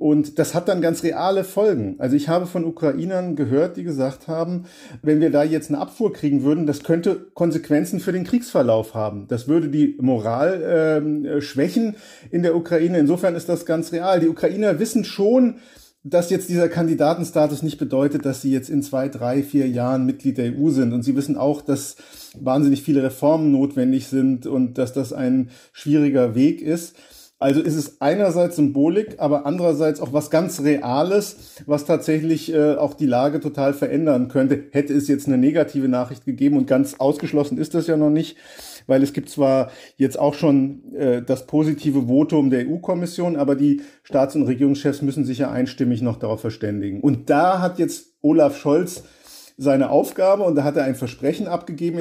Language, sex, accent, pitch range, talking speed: German, male, German, 135-165 Hz, 185 wpm